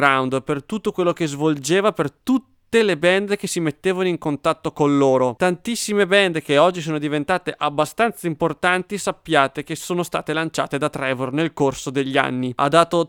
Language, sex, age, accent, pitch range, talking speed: English, male, 30-49, Italian, 140-170 Hz, 170 wpm